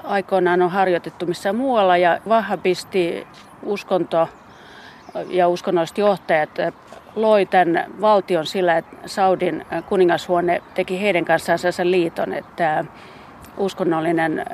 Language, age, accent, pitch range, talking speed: Finnish, 40-59, native, 170-200 Hz, 100 wpm